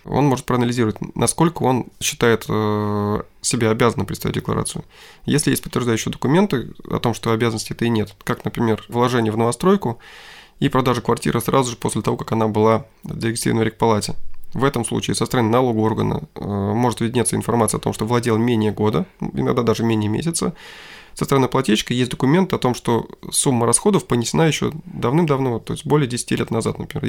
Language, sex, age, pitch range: Russian, male, 20-39, 110-130 Hz